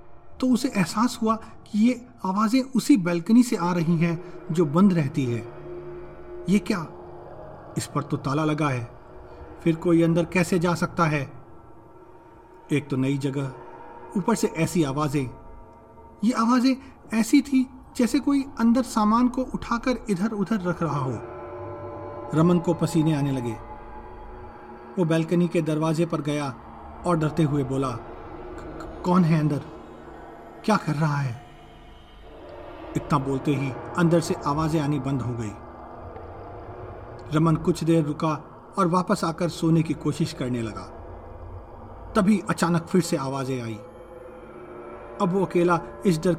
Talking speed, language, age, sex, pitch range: 140 wpm, Hindi, 40-59, male, 120-175 Hz